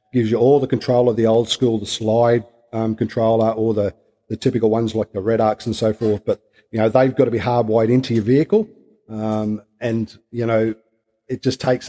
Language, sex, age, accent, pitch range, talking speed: English, male, 40-59, Australian, 110-120 Hz, 215 wpm